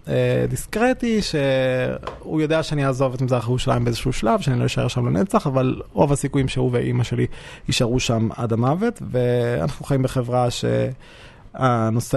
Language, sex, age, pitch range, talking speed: Hebrew, male, 20-39, 120-160 Hz, 145 wpm